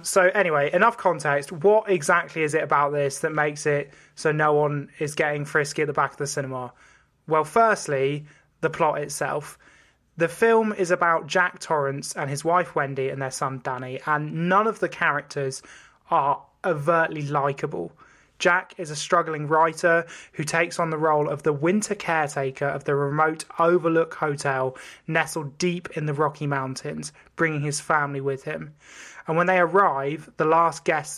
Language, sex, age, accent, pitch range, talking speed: English, male, 20-39, British, 140-170 Hz, 170 wpm